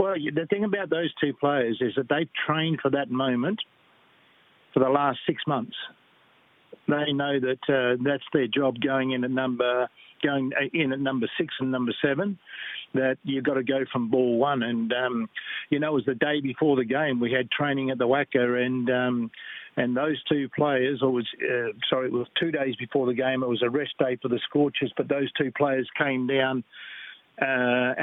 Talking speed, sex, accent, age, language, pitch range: 205 wpm, male, Australian, 50-69, English, 120-140 Hz